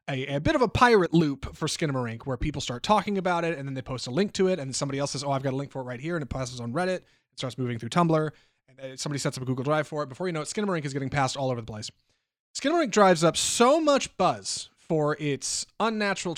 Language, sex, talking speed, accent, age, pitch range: English, male, 280 wpm, American, 30-49, 135-185 Hz